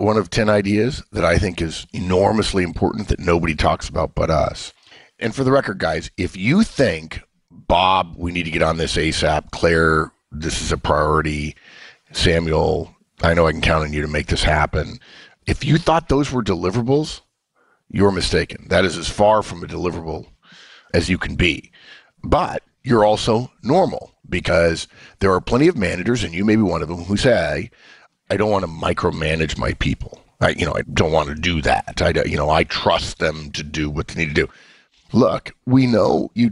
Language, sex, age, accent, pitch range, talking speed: English, male, 50-69, American, 80-110 Hz, 195 wpm